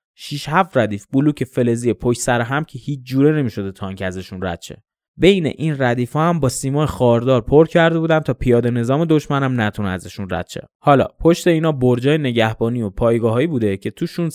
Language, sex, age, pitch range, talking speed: Persian, male, 20-39, 110-145 Hz, 190 wpm